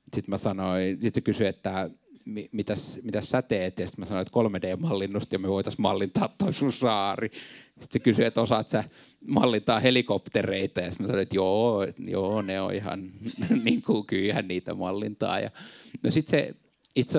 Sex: male